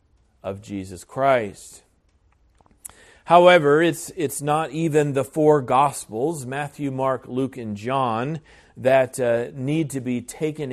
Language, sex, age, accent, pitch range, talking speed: English, male, 40-59, American, 100-135 Hz, 125 wpm